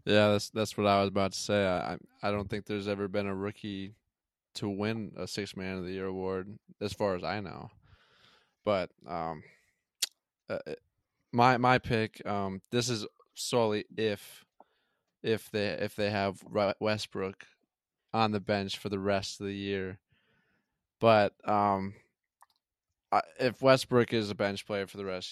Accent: American